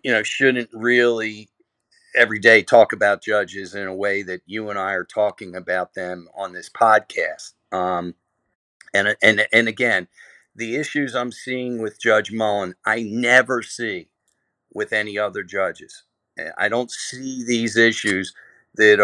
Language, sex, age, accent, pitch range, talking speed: English, male, 50-69, American, 105-125 Hz, 150 wpm